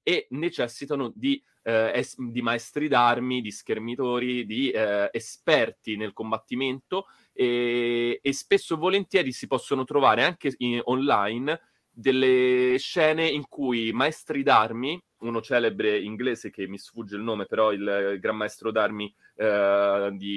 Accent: native